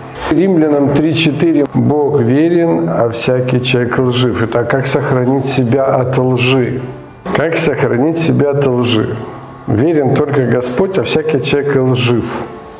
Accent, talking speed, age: native, 125 wpm, 50-69